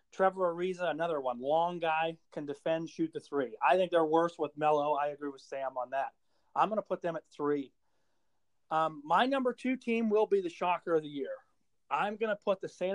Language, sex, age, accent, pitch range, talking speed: English, male, 40-59, American, 145-185 Hz, 220 wpm